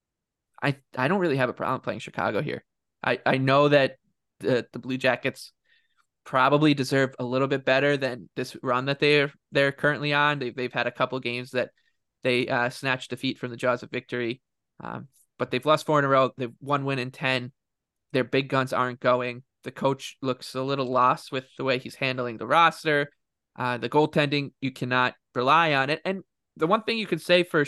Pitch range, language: 125-145 Hz, English